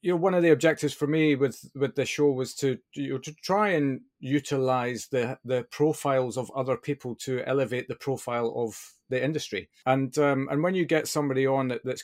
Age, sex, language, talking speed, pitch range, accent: 40-59, male, English, 215 wpm, 115-140 Hz, British